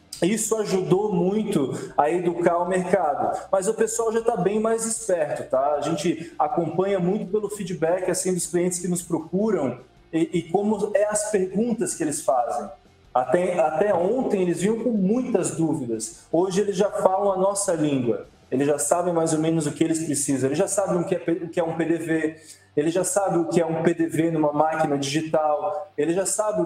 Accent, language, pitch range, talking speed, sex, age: Brazilian, Portuguese, 170-200 Hz, 195 wpm, male, 20-39